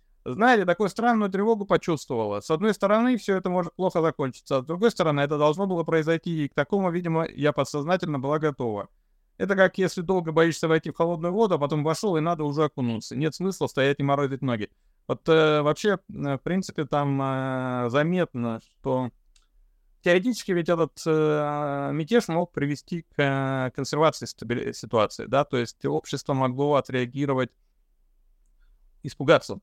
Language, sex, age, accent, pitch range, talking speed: Russian, male, 30-49, native, 115-160 Hz, 155 wpm